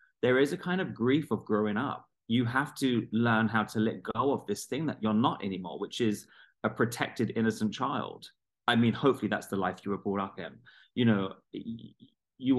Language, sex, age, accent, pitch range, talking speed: English, male, 30-49, British, 95-120 Hz, 210 wpm